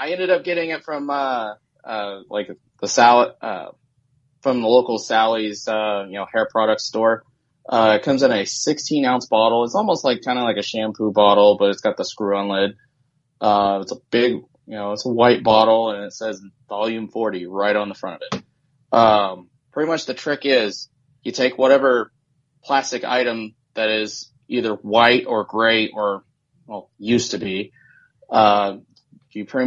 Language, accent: English, American